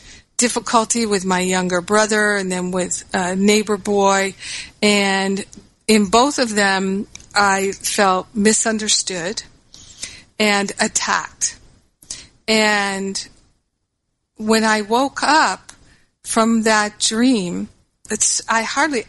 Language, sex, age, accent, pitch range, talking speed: English, female, 50-69, American, 195-225 Hz, 100 wpm